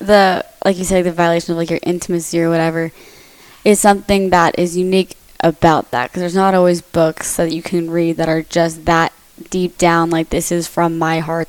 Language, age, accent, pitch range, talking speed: English, 20-39, American, 165-180 Hz, 210 wpm